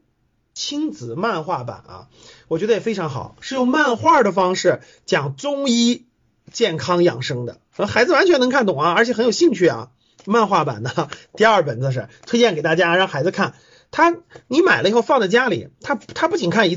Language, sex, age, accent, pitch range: Chinese, male, 30-49, native, 170-240 Hz